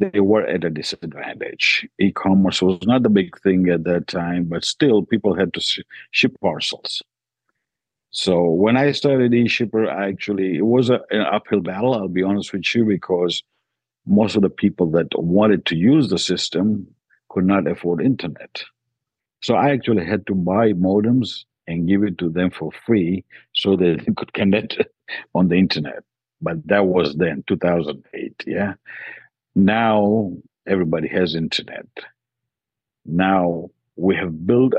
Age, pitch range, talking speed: 50-69, 85-110 Hz, 155 wpm